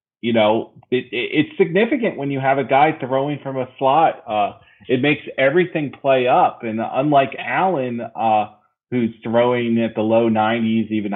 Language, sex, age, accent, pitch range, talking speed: English, male, 30-49, American, 110-140 Hz, 170 wpm